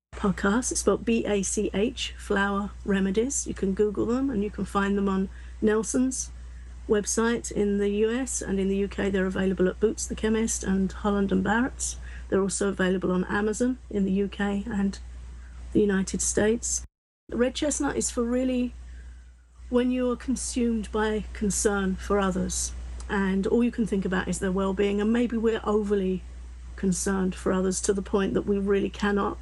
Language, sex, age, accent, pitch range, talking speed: English, female, 50-69, British, 190-210 Hz, 165 wpm